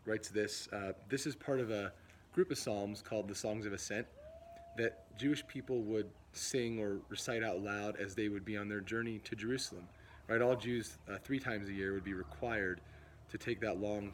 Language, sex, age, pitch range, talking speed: English, male, 30-49, 95-115 Hz, 210 wpm